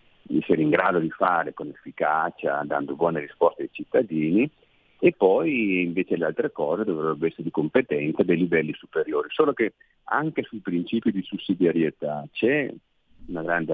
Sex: male